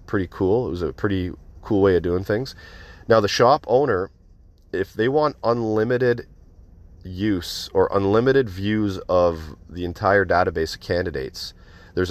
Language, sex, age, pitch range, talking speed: English, male, 30-49, 85-95 Hz, 150 wpm